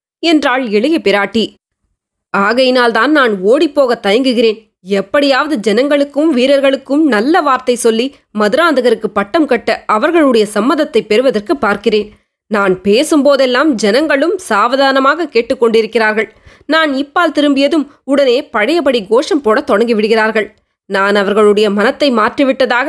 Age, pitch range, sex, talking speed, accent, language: 20-39, 220-285 Hz, female, 100 wpm, native, Tamil